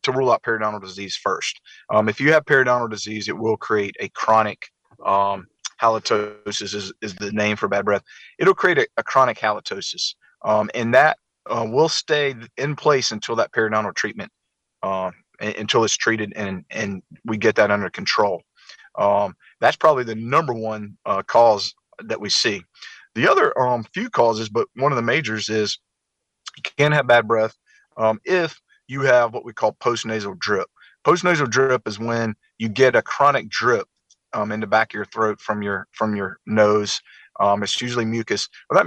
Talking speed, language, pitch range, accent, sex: 185 wpm, English, 105-125 Hz, American, male